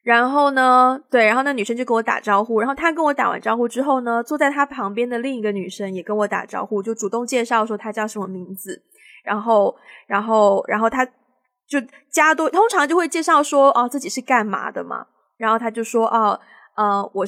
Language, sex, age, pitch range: Chinese, female, 20-39, 215-285 Hz